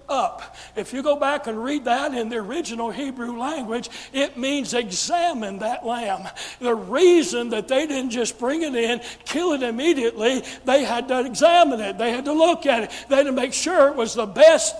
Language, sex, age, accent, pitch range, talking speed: English, male, 60-79, American, 245-310 Hz, 200 wpm